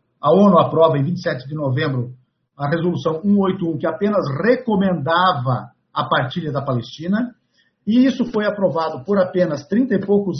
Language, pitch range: Portuguese, 155-220 Hz